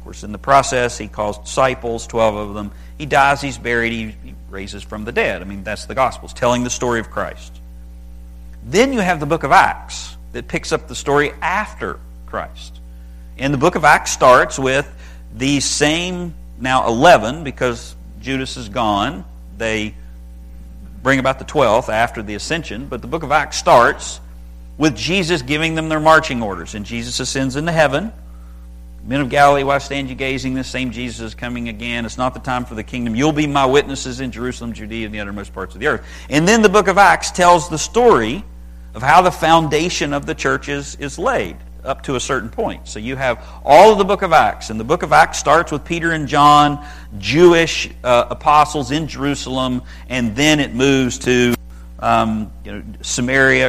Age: 50-69